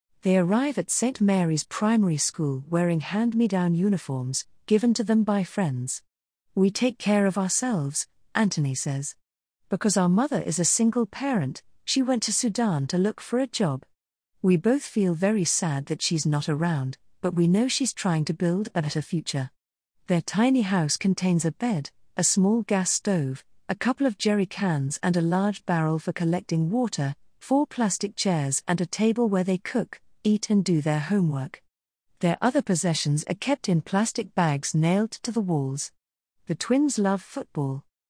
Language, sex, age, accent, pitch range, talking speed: English, female, 40-59, British, 155-215 Hz, 170 wpm